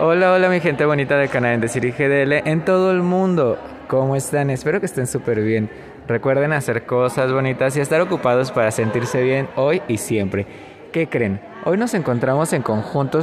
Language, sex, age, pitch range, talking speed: Spanish, male, 20-39, 120-150 Hz, 195 wpm